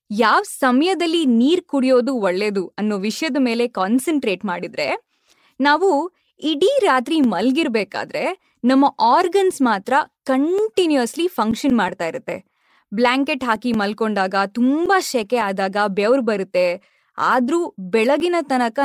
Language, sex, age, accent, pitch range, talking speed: Kannada, female, 20-39, native, 225-310 Hz, 100 wpm